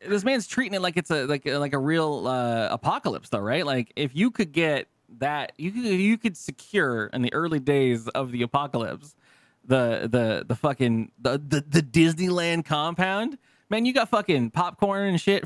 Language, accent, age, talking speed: English, American, 20-39, 195 wpm